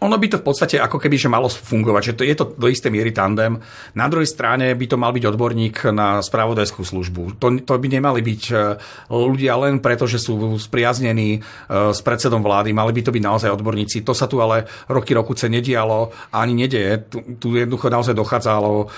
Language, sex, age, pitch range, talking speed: Slovak, male, 40-59, 105-125 Hz, 200 wpm